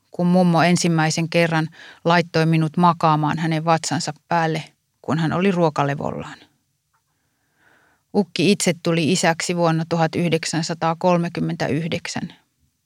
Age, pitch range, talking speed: 30-49, 155-175 Hz, 95 wpm